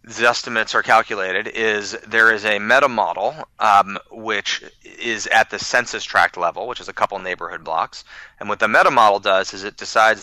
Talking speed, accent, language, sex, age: 195 wpm, American, English, male, 30-49